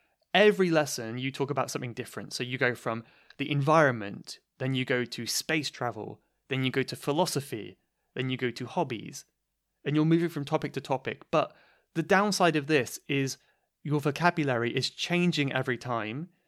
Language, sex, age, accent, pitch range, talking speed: English, male, 20-39, British, 130-160 Hz, 175 wpm